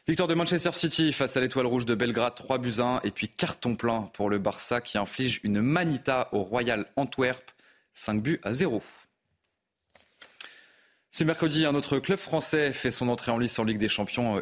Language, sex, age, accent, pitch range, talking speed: French, male, 30-49, French, 110-135 Hz, 190 wpm